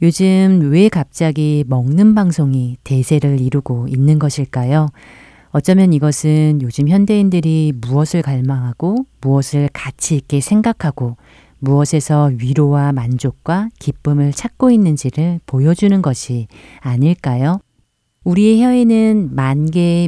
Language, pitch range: Korean, 130-175 Hz